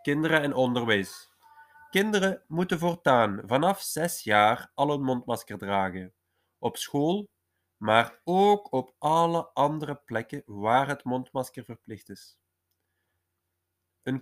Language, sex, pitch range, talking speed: Dutch, male, 100-145 Hz, 115 wpm